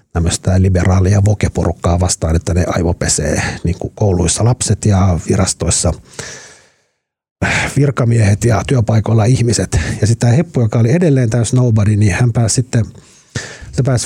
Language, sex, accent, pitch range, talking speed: Finnish, male, native, 95-120 Hz, 115 wpm